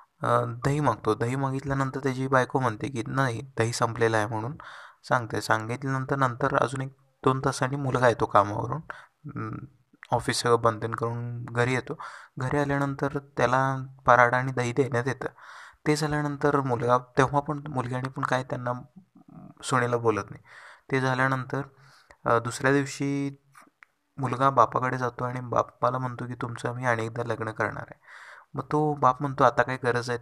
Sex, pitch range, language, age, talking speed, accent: male, 120-140 Hz, Marathi, 20-39, 145 wpm, native